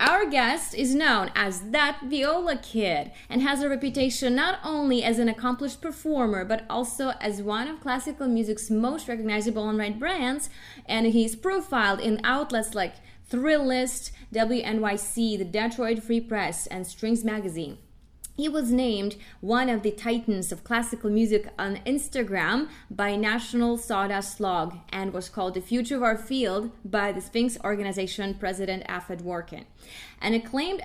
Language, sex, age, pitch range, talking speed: English, female, 20-39, 205-250 Hz, 150 wpm